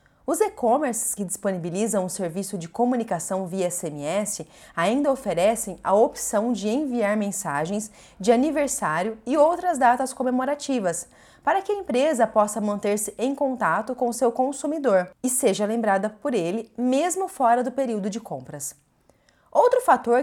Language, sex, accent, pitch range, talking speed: Portuguese, female, Brazilian, 200-260 Hz, 140 wpm